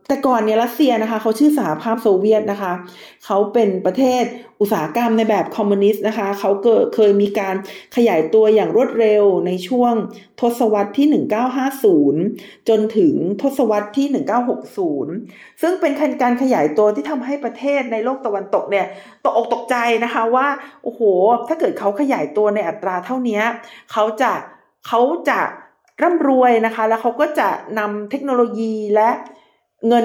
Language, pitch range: Thai, 205-260 Hz